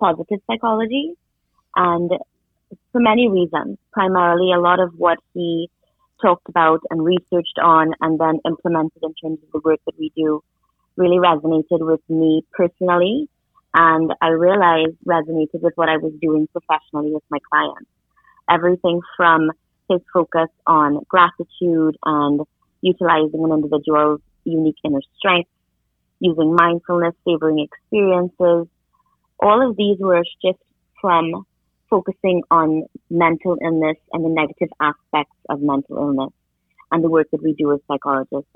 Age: 30-49